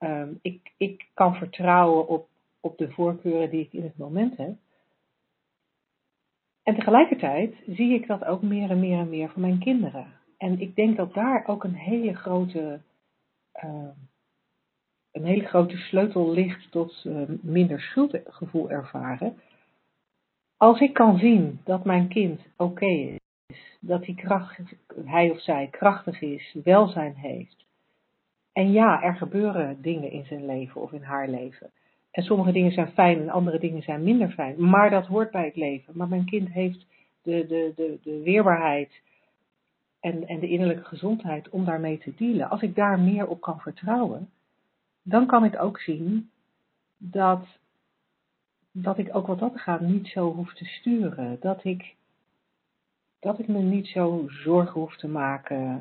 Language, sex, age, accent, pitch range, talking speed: Dutch, female, 60-79, Dutch, 160-200 Hz, 155 wpm